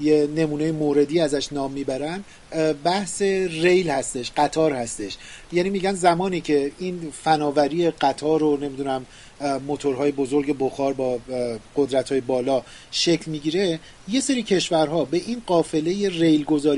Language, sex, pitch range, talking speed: Persian, male, 140-175 Hz, 125 wpm